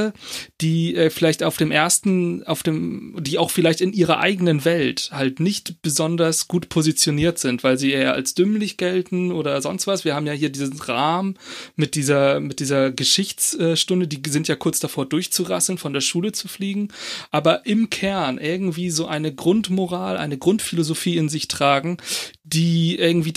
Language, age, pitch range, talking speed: German, 30-49, 150-180 Hz, 170 wpm